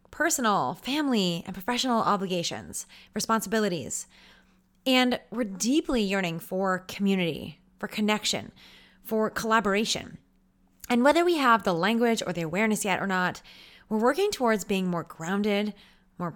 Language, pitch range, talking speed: English, 185-245 Hz, 130 wpm